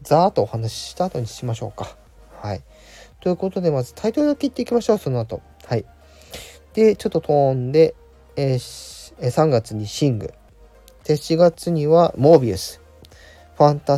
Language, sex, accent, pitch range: Japanese, male, native, 100-145 Hz